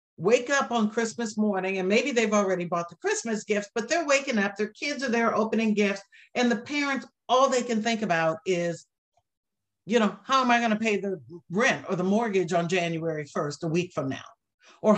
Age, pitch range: 60-79, 180-240 Hz